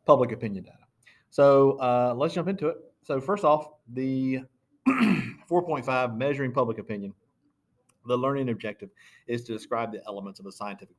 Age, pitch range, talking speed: 50-69, 105-130 Hz, 155 wpm